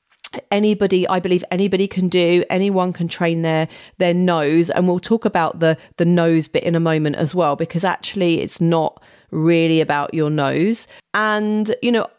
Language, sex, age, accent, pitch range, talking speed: English, female, 30-49, British, 170-210 Hz, 175 wpm